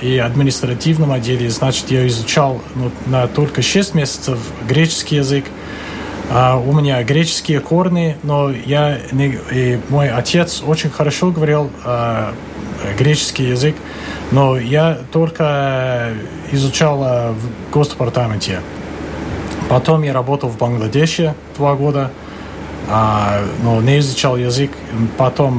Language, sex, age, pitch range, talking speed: Russian, male, 30-49, 115-145 Hz, 115 wpm